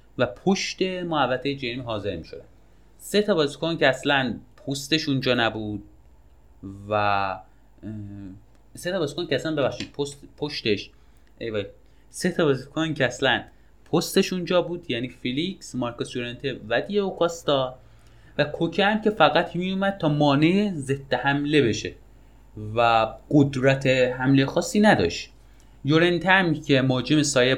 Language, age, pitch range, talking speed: English, 30-49, 115-155 Hz, 130 wpm